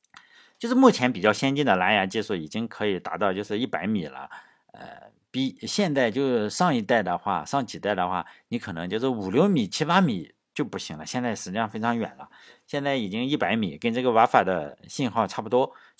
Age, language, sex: 50-69, Chinese, male